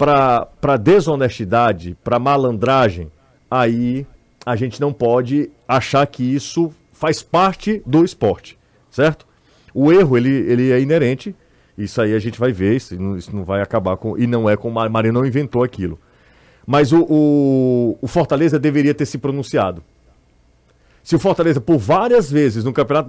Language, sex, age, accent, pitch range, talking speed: Portuguese, male, 40-59, Brazilian, 120-150 Hz, 155 wpm